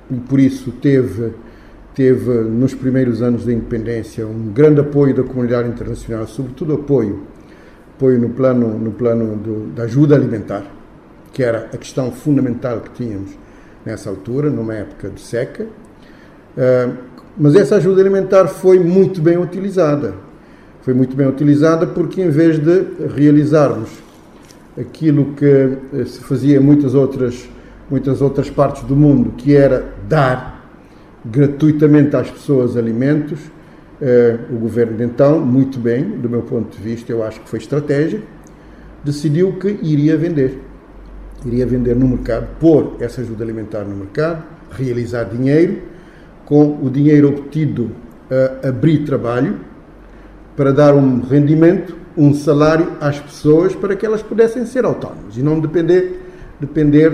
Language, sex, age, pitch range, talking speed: Portuguese, male, 50-69, 120-150 Hz, 140 wpm